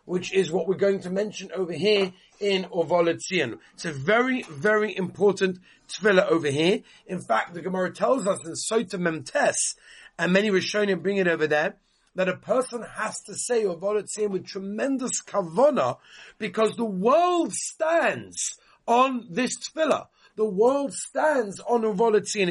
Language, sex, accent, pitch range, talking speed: English, male, British, 175-225 Hz, 155 wpm